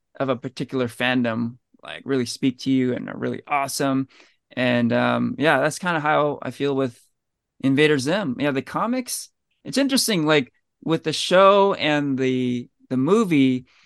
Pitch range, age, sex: 115-140 Hz, 20-39, male